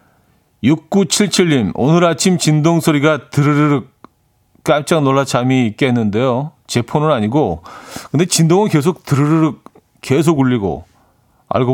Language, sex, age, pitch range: Korean, male, 40-59, 105-155 Hz